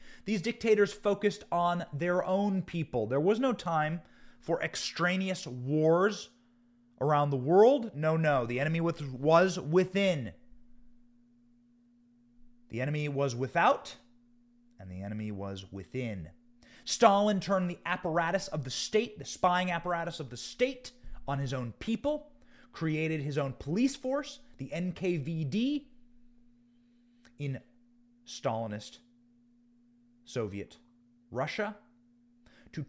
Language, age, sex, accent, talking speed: English, 30-49, male, American, 110 wpm